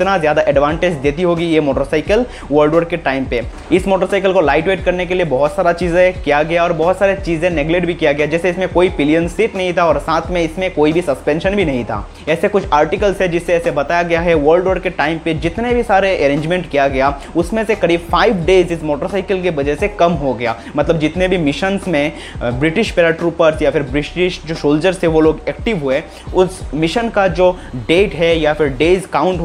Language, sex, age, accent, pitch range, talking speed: Hindi, male, 20-39, native, 150-185 Hz, 225 wpm